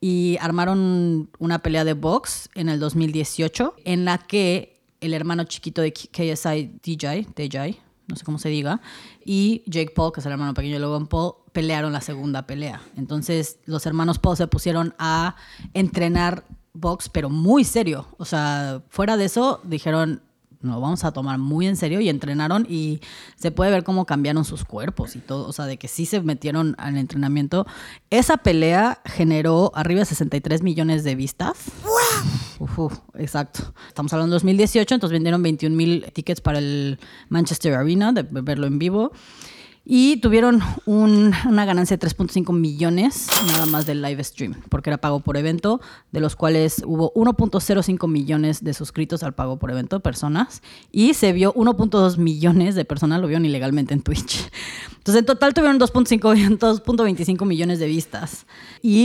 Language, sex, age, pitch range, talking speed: Spanish, female, 20-39, 155-200 Hz, 170 wpm